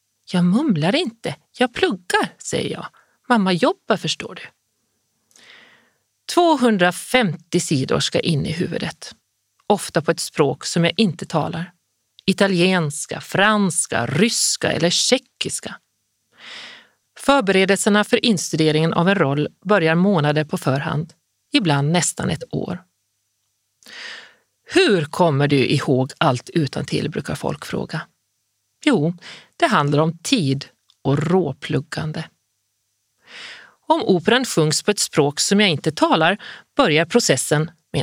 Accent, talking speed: native, 115 wpm